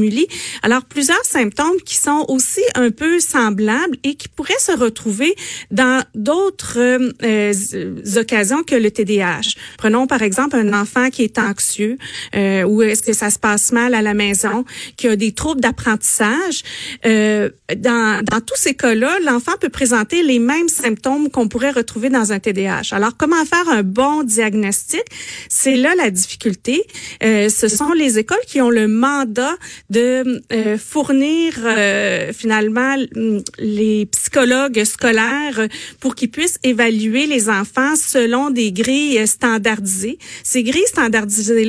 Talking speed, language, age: 145 wpm, French, 40-59